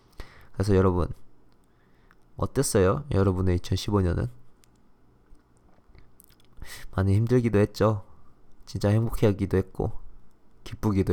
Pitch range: 75-110 Hz